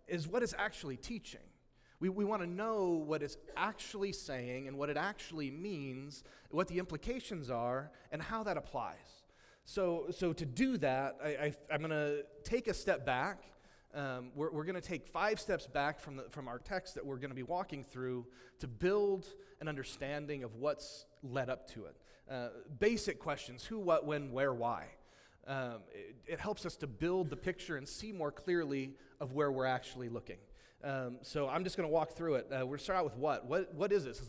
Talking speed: 210 wpm